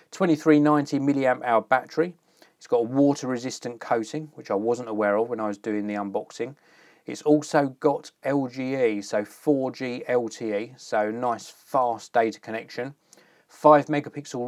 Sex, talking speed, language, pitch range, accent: male, 140 wpm, English, 115-150 Hz, British